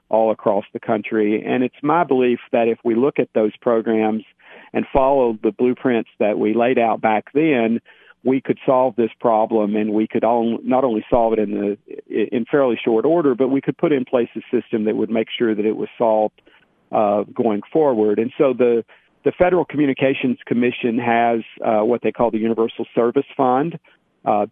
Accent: American